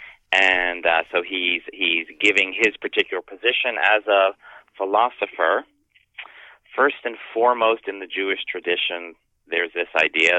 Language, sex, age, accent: English, male, 40-59, American